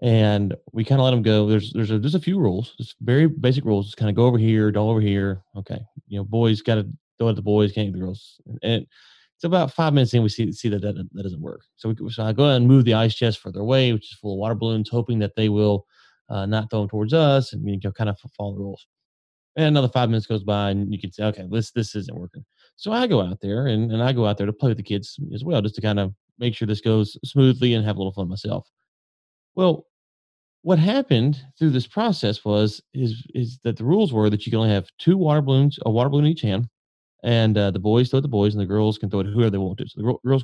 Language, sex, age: English, male, 30-49